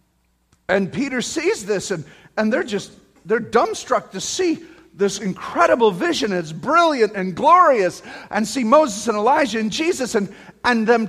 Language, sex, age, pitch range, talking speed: English, male, 40-59, 200-310 Hz, 155 wpm